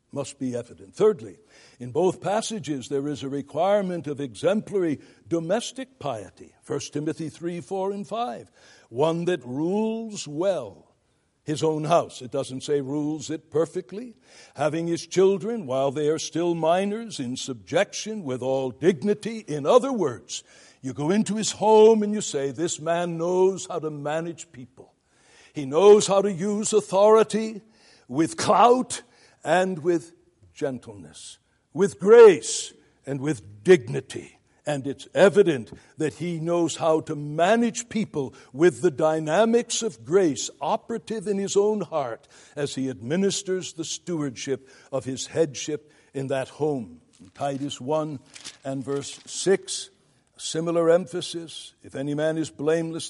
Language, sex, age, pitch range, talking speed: English, male, 60-79, 140-195 Hz, 140 wpm